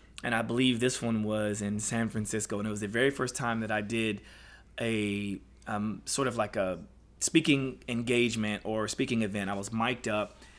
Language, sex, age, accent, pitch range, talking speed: English, male, 20-39, American, 105-130 Hz, 195 wpm